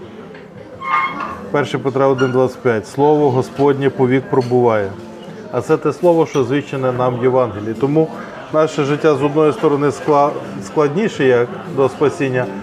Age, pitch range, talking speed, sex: 20-39, 135-160 Hz, 130 wpm, male